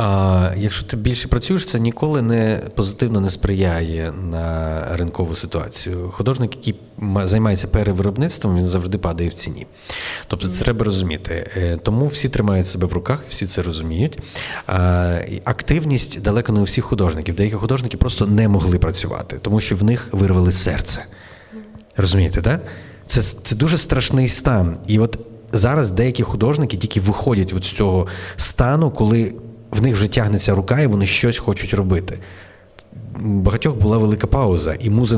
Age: 30-49